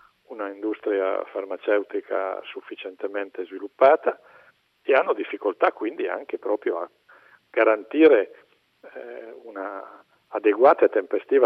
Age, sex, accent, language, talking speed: 50-69, male, native, Italian, 95 wpm